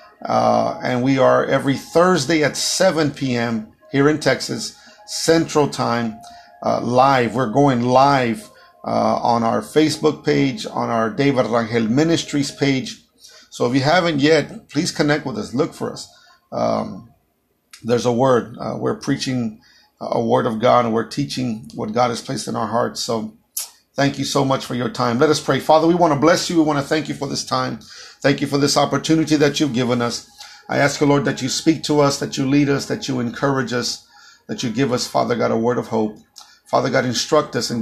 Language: English